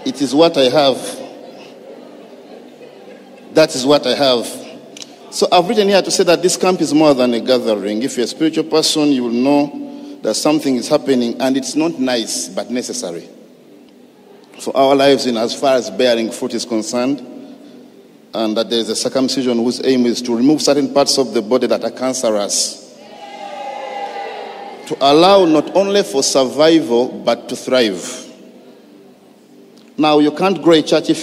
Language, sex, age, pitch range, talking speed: English, male, 50-69, 125-160 Hz, 170 wpm